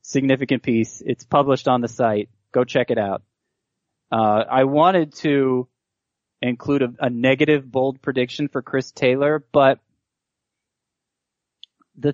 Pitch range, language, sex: 115-145 Hz, English, male